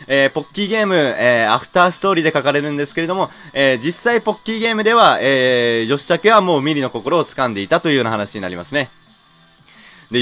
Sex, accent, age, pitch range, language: male, native, 20-39, 130-180 Hz, Japanese